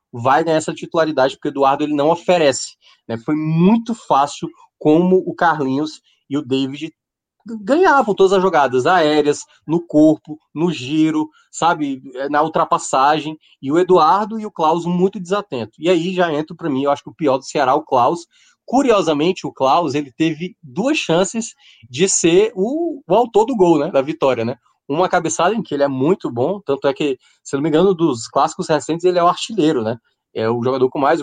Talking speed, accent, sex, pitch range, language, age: 190 wpm, Brazilian, male, 140-185 Hz, Portuguese, 20-39